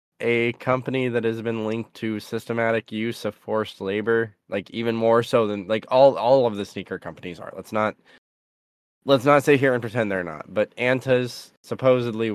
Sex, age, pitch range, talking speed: male, 10-29, 90-115 Hz, 185 wpm